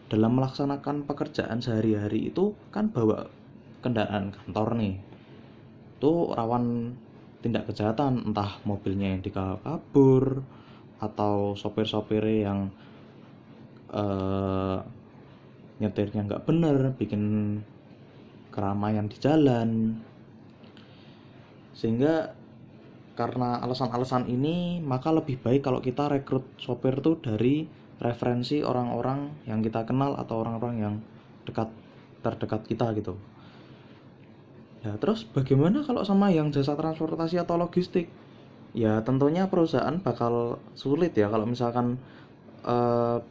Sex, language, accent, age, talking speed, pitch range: male, Indonesian, native, 20-39, 105 wpm, 110-130 Hz